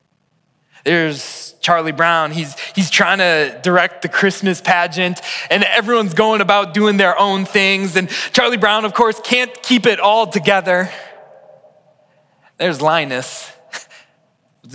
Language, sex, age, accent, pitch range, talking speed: English, male, 20-39, American, 150-180 Hz, 130 wpm